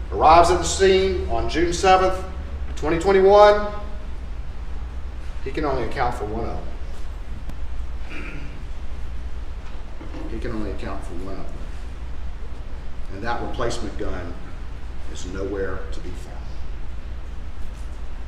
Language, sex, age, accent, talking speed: English, male, 40-59, American, 110 wpm